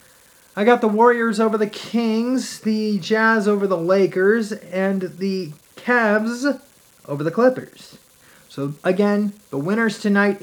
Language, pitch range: English, 165-215 Hz